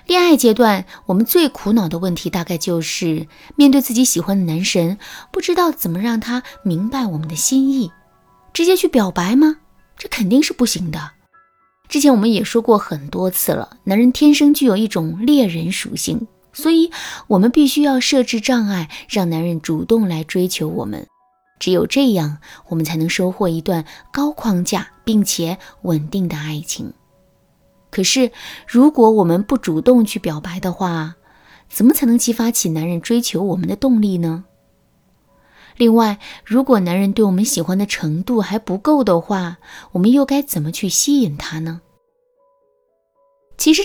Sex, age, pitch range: female, 20-39, 175-260 Hz